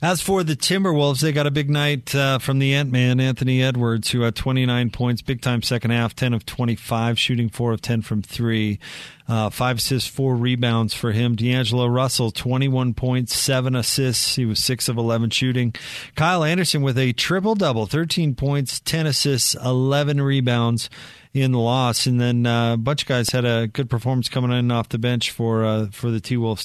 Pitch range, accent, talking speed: 115-140 Hz, American, 195 wpm